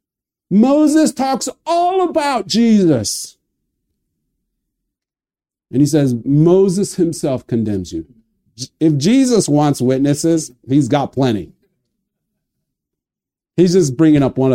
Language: Japanese